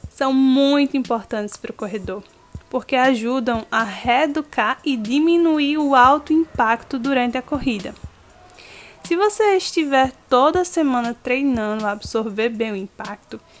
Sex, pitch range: female, 230-290 Hz